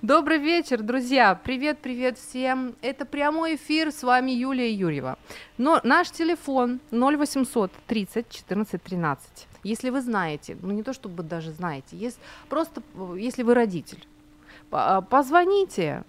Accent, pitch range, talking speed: native, 175-260 Hz, 125 wpm